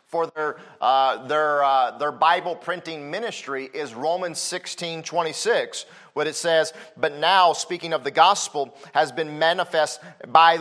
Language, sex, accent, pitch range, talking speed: English, male, American, 155-190 Hz, 155 wpm